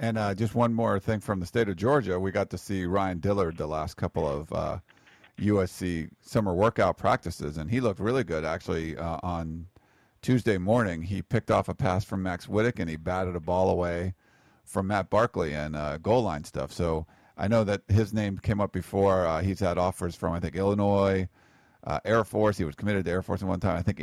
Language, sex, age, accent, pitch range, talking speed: English, male, 40-59, American, 85-105 Hz, 220 wpm